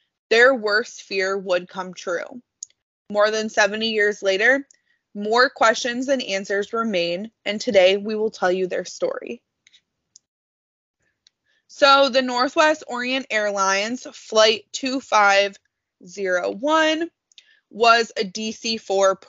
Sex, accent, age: female, American, 20-39